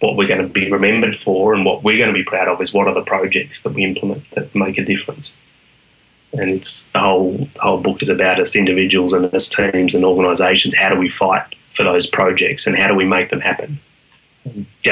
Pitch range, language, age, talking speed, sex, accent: 90-95 Hz, English, 20-39, 230 wpm, male, Australian